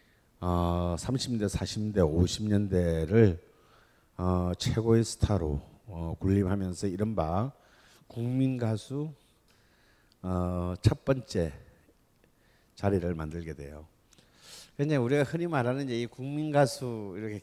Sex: male